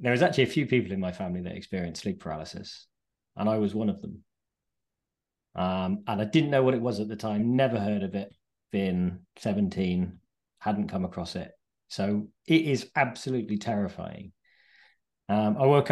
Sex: male